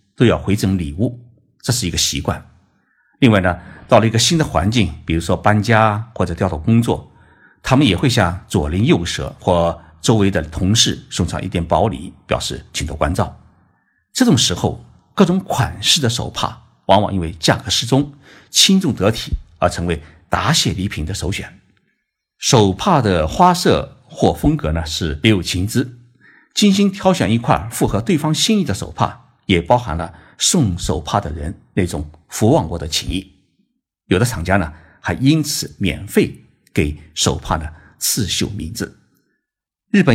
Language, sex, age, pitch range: Chinese, male, 50-69, 80-120 Hz